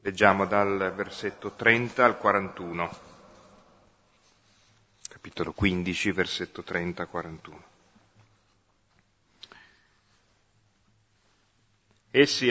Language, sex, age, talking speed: Italian, male, 40-59, 60 wpm